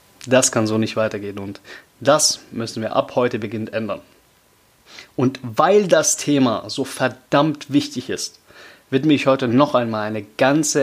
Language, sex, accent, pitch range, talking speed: German, male, German, 110-130 Hz, 155 wpm